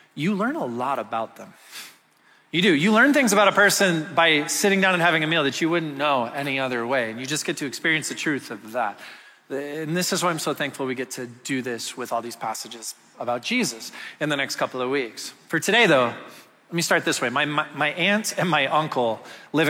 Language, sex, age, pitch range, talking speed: English, male, 30-49, 145-200 Hz, 240 wpm